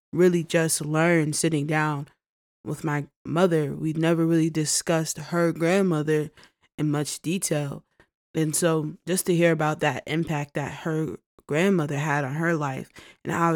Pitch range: 150-180 Hz